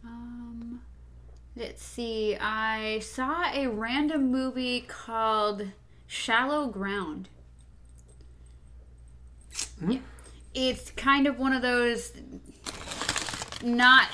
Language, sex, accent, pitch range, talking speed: English, female, American, 190-230 Hz, 80 wpm